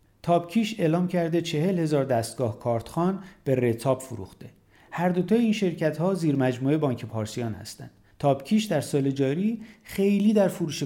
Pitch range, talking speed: 120-165 Hz, 145 wpm